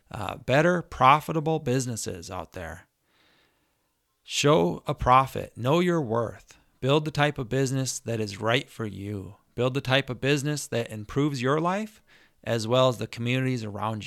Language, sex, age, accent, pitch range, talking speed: English, male, 30-49, American, 115-145 Hz, 160 wpm